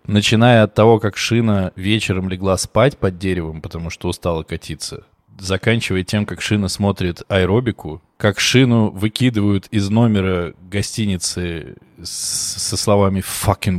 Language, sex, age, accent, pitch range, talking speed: Russian, male, 20-39, native, 90-115 Hz, 125 wpm